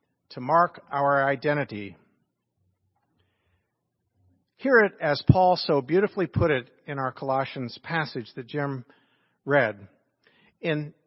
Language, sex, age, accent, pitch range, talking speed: English, male, 50-69, American, 130-170 Hz, 110 wpm